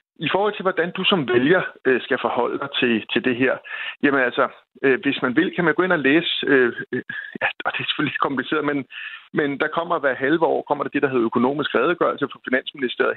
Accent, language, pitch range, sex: native, Danish, 135-185 Hz, male